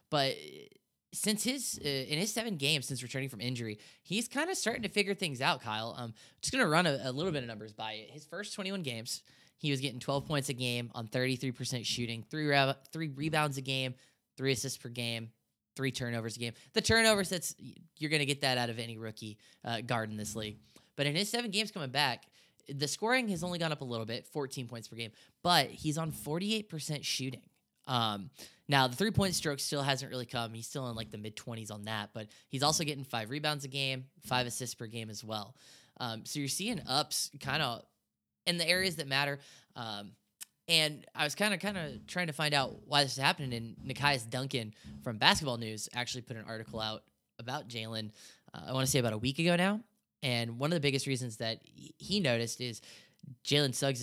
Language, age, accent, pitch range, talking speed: English, 10-29, American, 120-155 Hz, 220 wpm